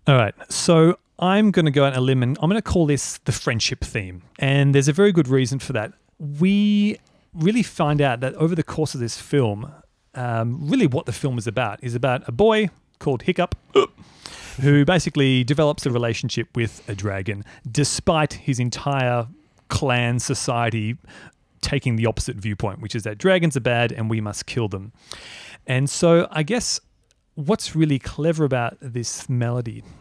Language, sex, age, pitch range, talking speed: English, male, 30-49, 115-155 Hz, 180 wpm